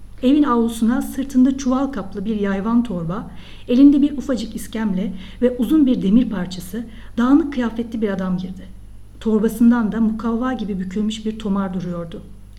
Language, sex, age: Turkish, female, 50-69